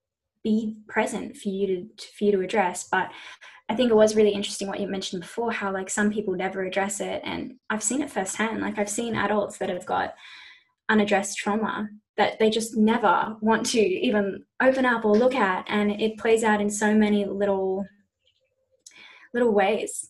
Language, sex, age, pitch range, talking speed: English, female, 10-29, 195-230 Hz, 190 wpm